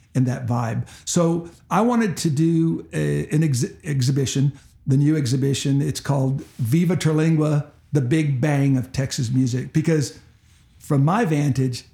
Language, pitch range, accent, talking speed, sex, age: English, 130-160 Hz, American, 145 wpm, male, 50-69